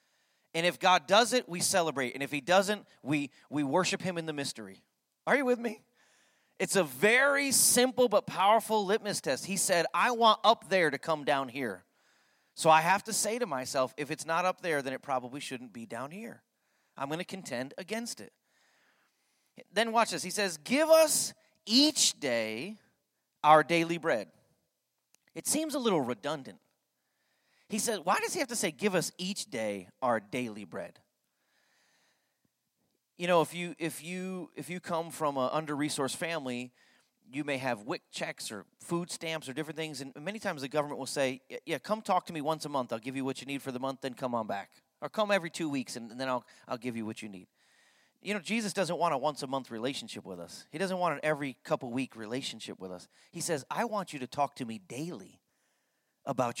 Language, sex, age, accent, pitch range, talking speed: English, male, 30-49, American, 135-200 Hz, 205 wpm